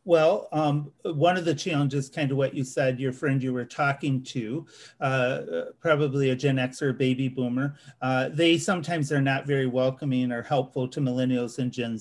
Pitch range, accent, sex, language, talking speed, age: 125-145 Hz, American, male, English, 195 wpm, 40-59